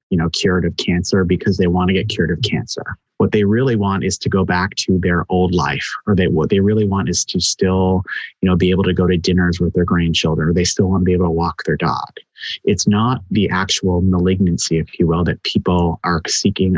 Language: English